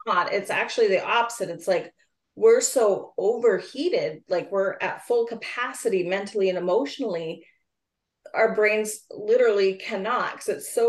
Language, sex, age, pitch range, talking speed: English, female, 30-49, 180-250 Hz, 140 wpm